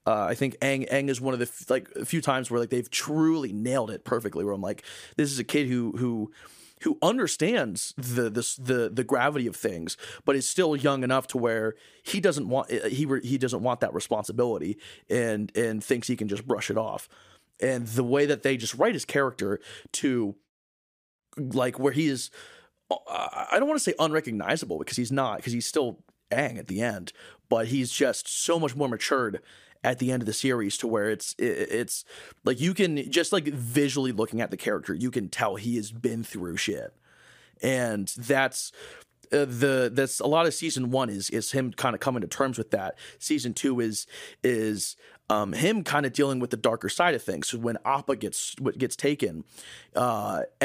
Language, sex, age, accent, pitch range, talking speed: English, male, 30-49, American, 120-140 Hz, 205 wpm